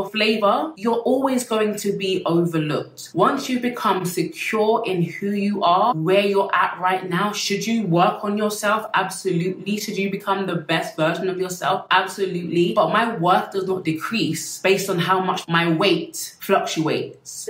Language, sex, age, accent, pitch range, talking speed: English, female, 20-39, British, 165-215 Hz, 165 wpm